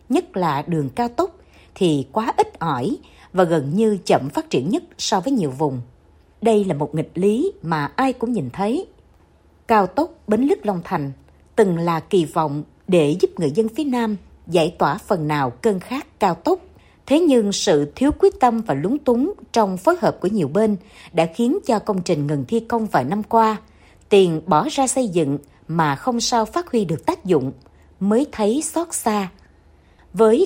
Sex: female